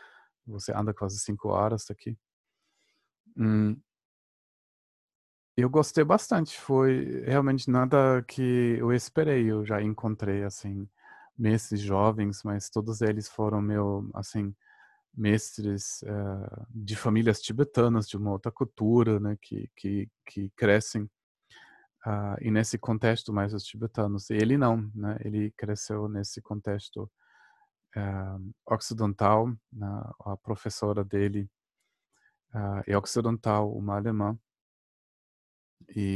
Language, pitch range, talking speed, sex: Portuguese, 100-115 Hz, 115 wpm, male